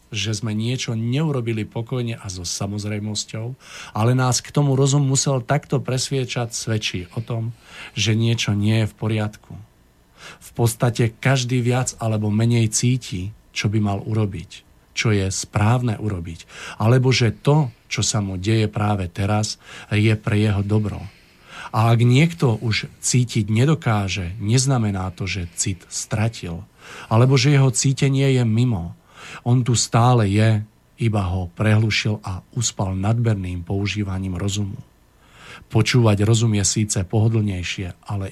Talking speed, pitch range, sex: 140 wpm, 100-125 Hz, male